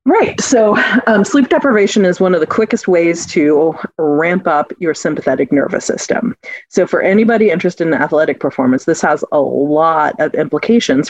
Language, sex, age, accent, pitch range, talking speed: English, female, 30-49, American, 160-220 Hz, 170 wpm